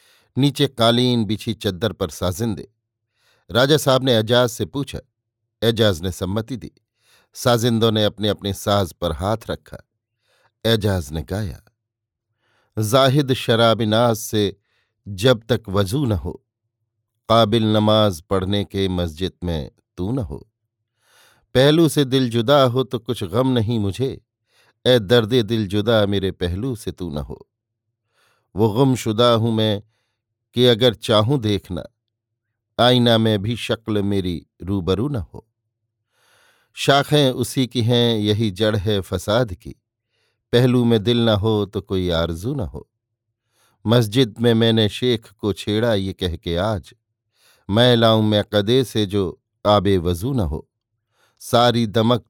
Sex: male